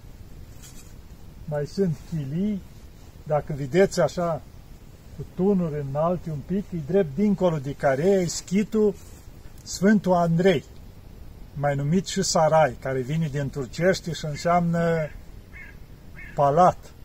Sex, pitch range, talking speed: male, 140-180 Hz, 110 wpm